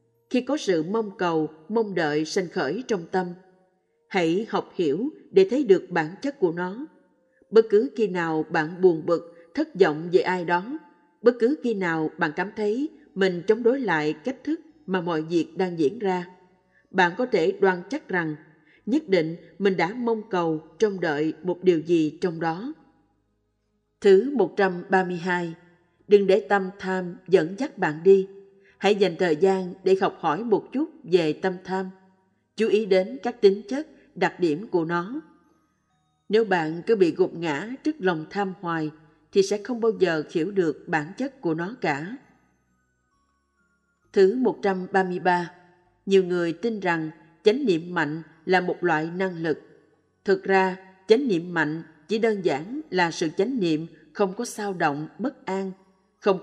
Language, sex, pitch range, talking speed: Vietnamese, female, 170-215 Hz, 170 wpm